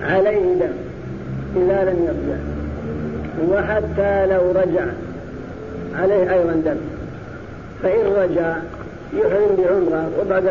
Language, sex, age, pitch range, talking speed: Arabic, female, 50-69, 170-195 Hz, 90 wpm